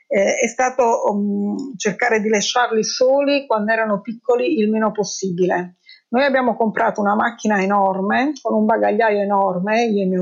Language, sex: Italian, female